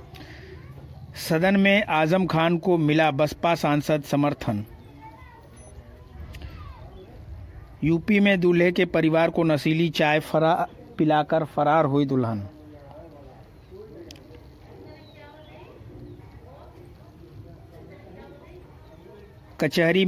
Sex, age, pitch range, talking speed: male, 50-69, 140-165 Hz, 70 wpm